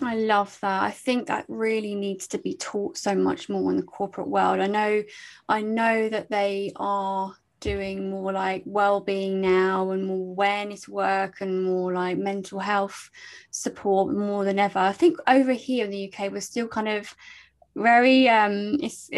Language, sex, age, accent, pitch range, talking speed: English, female, 20-39, British, 190-235 Hz, 180 wpm